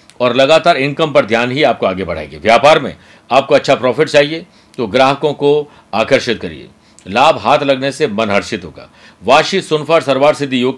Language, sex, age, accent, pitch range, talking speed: Hindi, male, 50-69, native, 120-150 Hz, 175 wpm